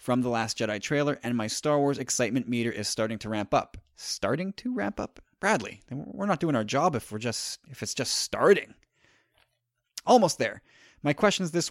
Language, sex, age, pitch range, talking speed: English, male, 30-49, 120-150 Hz, 185 wpm